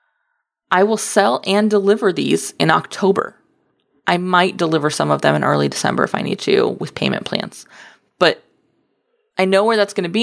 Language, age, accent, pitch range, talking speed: English, 20-39, American, 165-210 Hz, 190 wpm